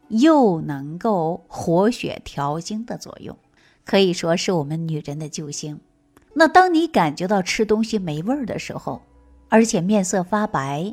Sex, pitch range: female, 155-230 Hz